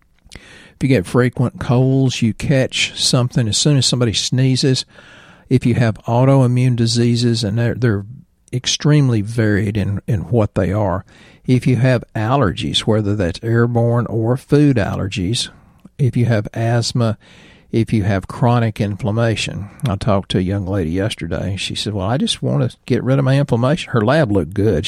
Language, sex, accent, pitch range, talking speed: English, male, American, 95-120 Hz, 170 wpm